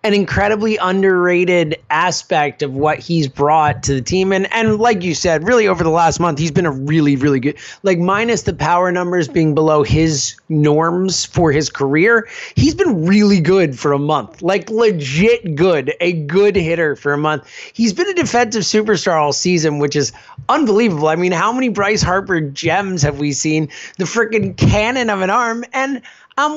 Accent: American